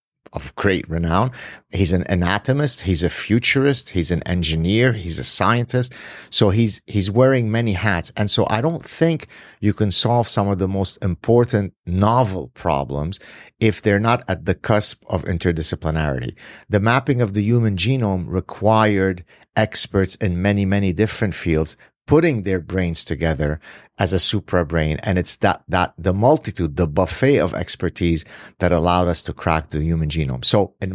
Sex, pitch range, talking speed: male, 85-115 Hz, 165 wpm